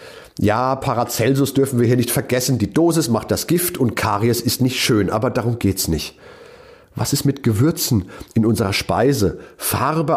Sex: male